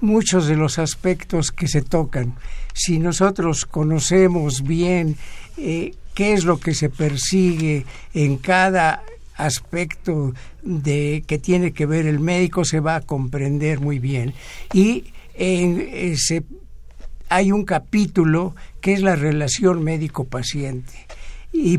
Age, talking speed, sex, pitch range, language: 60-79, 125 wpm, male, 135-170 Hz, Spanish